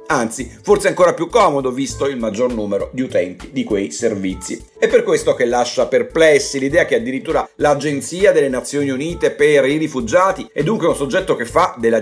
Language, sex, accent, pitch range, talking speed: Italian, male, native, 125-175 Hz, 185 wpm